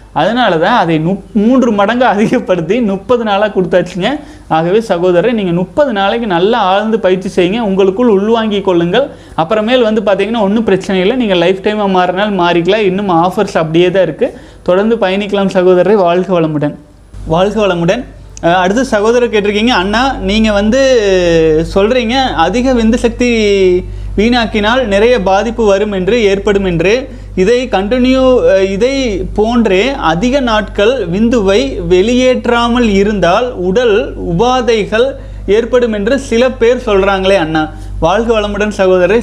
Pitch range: 180-230 Hz